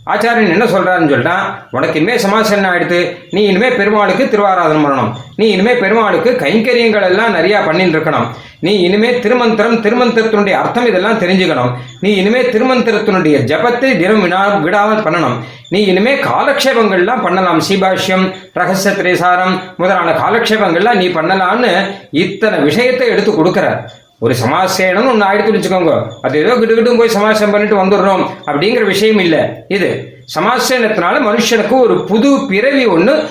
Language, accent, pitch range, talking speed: Tamil, native, 175-230 Hz, 60 wpm